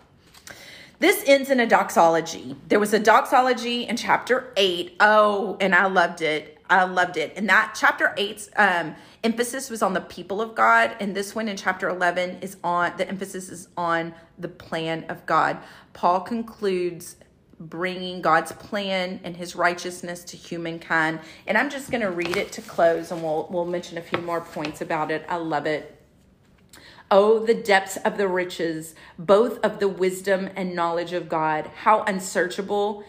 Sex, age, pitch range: female, 40-59, 175-215 Hz